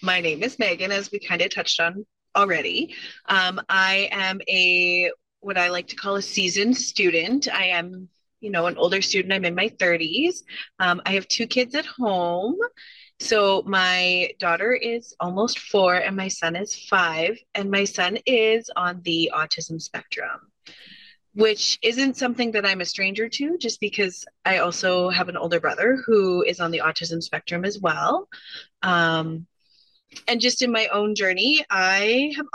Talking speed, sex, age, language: 170 wpm, female, 20-39, English